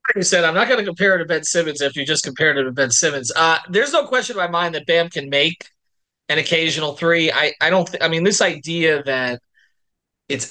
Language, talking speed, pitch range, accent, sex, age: English, 250 wpm, 130-165 Hz, American, male, 30-49